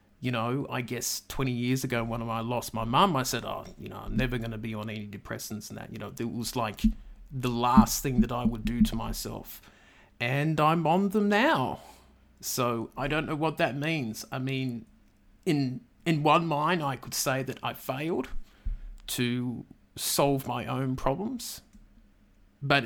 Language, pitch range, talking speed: English, 120-150 Hz, 185 wpm